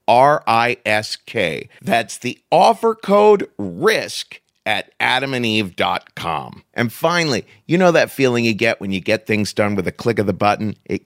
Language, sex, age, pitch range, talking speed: English, male, 40-59, 115-185 Hz, 150 wpm